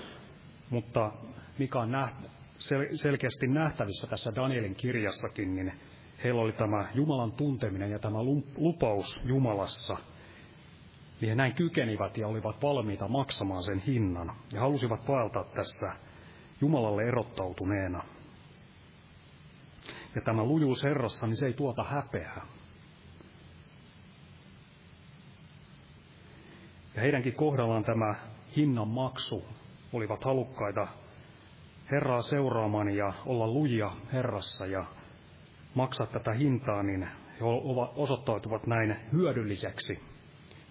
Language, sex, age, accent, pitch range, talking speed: Finnish, male, 30-49, native, 105-135 Hz, 95 wpm